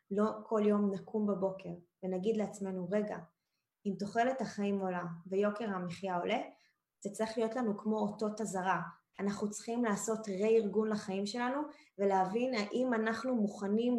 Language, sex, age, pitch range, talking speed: Hebrew, female, 20-39, 195-250 Hz, 135 wpm